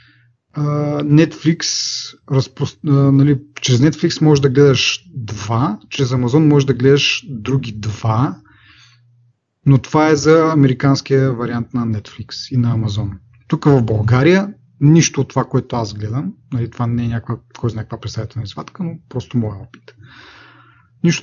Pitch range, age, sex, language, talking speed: 120-145 Hz, 30-49, male, Bulgarian, 140 wpm